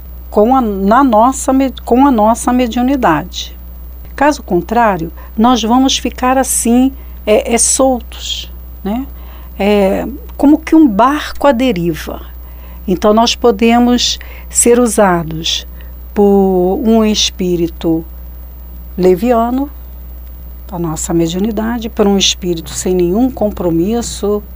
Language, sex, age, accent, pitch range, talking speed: Portuguese, female, 60-79, Brazilian, 160-240 Hz, 90 wpm